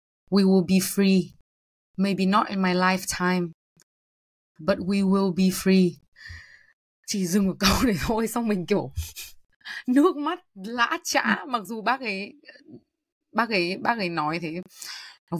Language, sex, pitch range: Vietnamese, female, 170-215 Hz